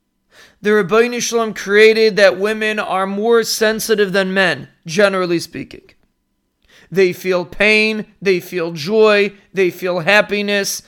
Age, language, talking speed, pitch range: 40-59, English, 120 wpm, 185-230 Hz